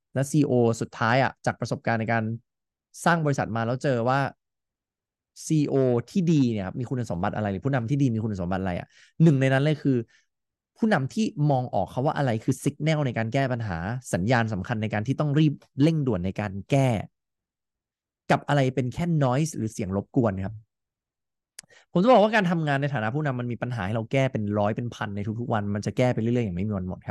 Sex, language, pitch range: male, English, 110-145 Hz